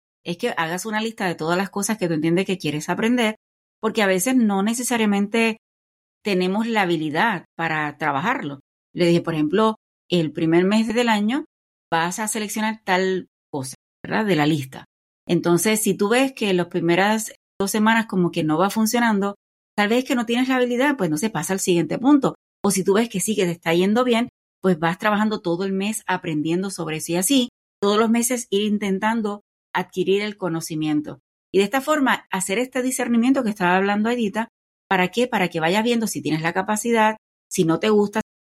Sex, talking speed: female, 200 wpm